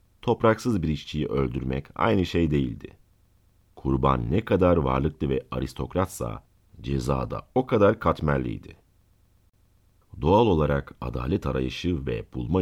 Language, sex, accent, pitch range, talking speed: Turkish, male, native, 70-95 Hz, 110 wpm